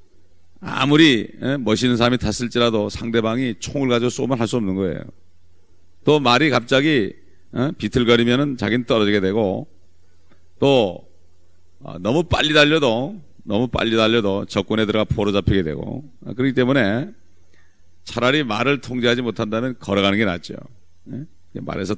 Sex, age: male, 40-59